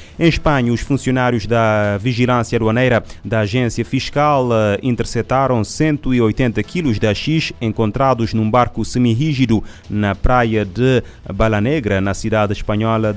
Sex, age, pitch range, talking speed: male, 30-49, 105-120 Hz, 120 wpm